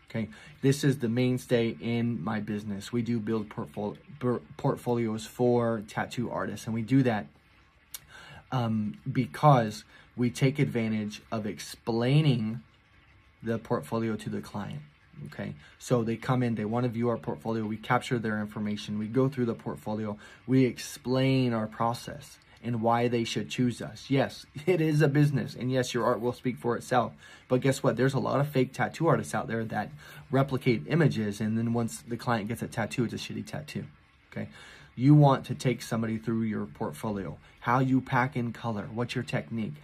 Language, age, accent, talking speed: English, 20-39, American, 175 wpm